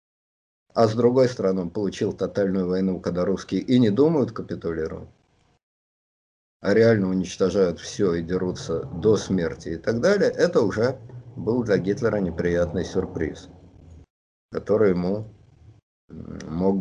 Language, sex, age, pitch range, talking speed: Russian, male, 50-69, 85-120 Hz, 125 wpm